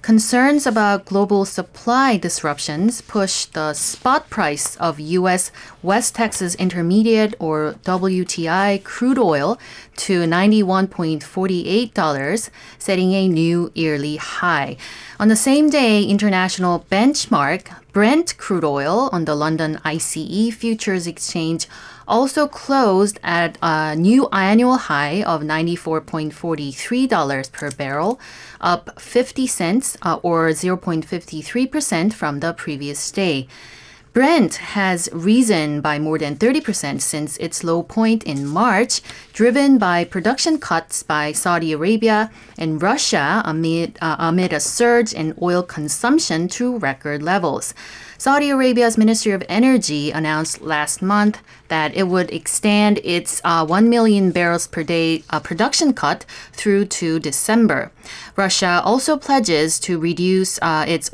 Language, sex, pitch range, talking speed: English, female, 160-220 Hz, 125 wpm